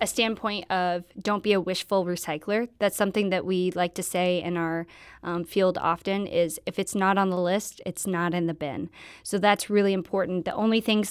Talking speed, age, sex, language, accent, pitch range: 210 wpm, 20-39, female, English, American, 170-195 Hz